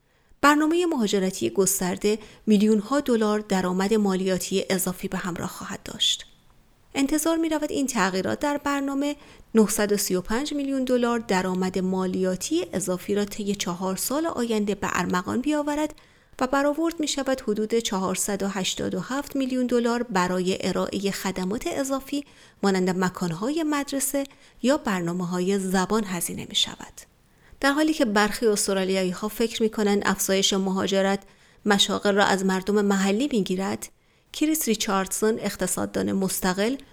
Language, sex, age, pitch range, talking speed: Persian, female, 30-49, 190-240 Hz, 125 wpm